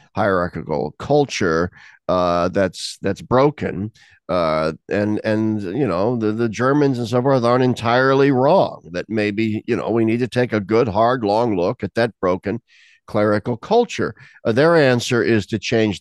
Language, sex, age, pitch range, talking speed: English, male, 50-69, 100-120 Hz, 165 wpm